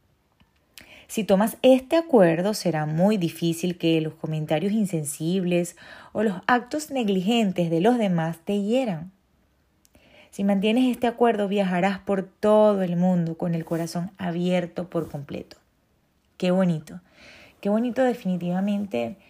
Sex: female